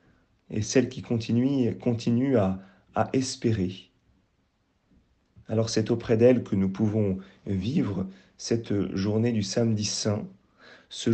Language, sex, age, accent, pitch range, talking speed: French, male, 40-59, French, 95-115 Hz, 120 wpm